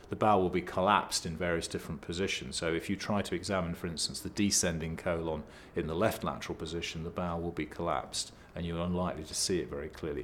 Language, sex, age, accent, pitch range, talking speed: English, male, 40-59, British, 85-100 Hz, 225 wpm